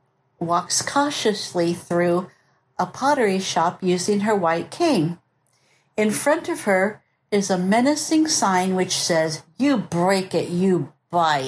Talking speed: 130 wpm